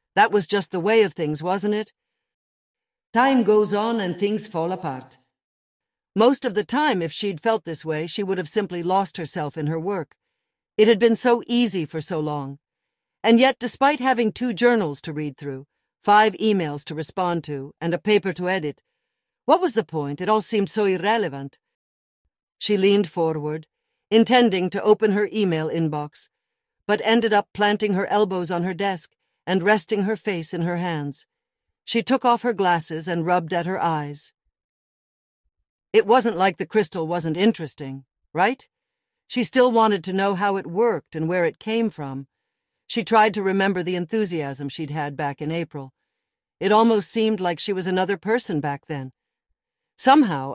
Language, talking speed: English, 175 wpm